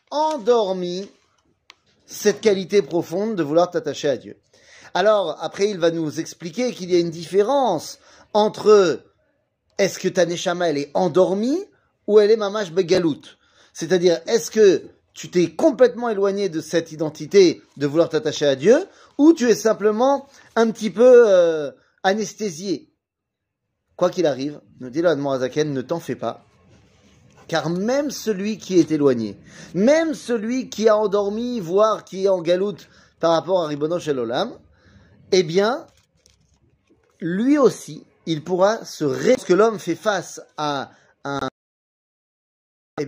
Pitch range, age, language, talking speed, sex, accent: 150-215 Hz, 30-49, French, 150 wpm, male, French